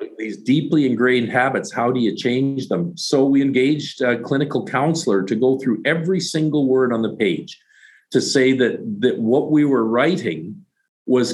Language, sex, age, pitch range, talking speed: English, male, 50-69, 105-135 Hz, 175 wpm